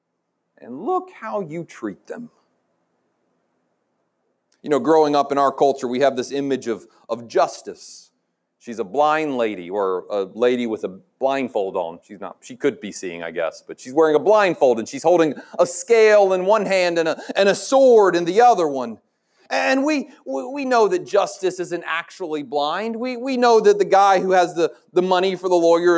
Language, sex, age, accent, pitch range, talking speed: English, male, 40-59, American, 180-270 Hz, 195 wpm